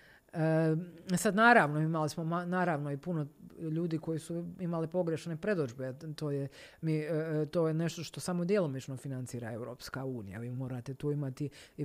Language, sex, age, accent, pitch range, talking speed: Croatian, female, 40-59, native, 135-165 Hz, 150 wpm